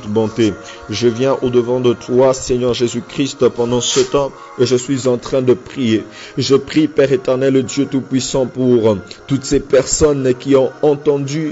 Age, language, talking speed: 50-69, French, 170 wpm